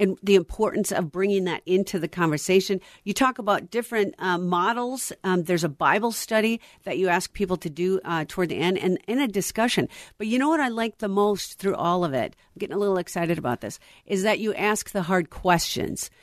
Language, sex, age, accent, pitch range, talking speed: English, female, 50-69, American, 165-205 Hz, 220 wpm